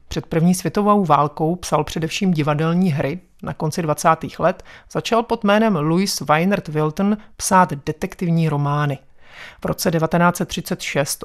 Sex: male